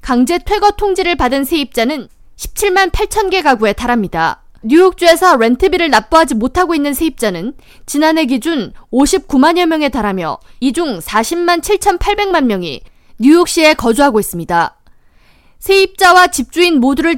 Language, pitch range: Korean, 245-345 Hz